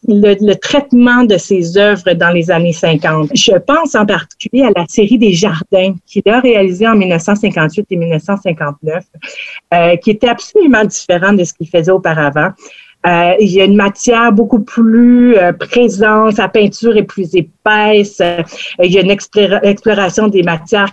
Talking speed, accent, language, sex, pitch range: 170 wpm, Canadian, French, female, 180-220 Hz